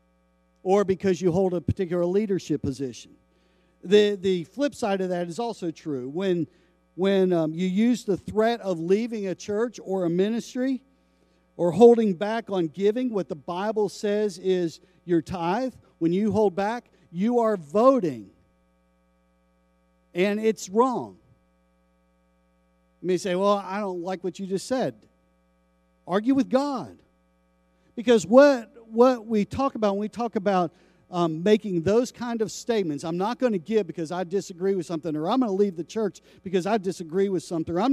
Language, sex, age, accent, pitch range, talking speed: English, male, 50-69, American, 140-215 Hz, 170 wpm